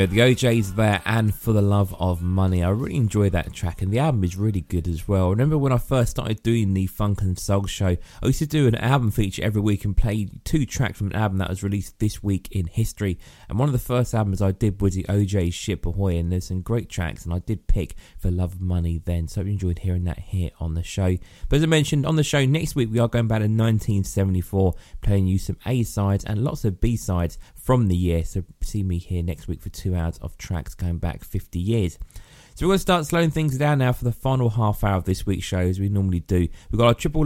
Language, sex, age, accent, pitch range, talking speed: English, male, 20-39, British, 90-120 Hz, 265 wpm